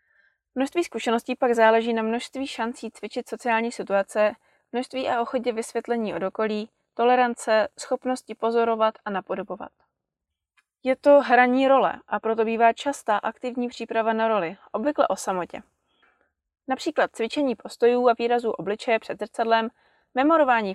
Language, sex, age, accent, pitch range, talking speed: Czech, female, 20-39, native, 215-255 Hz, 125 wpm